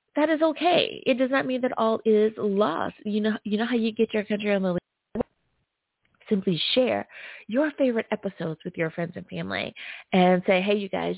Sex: female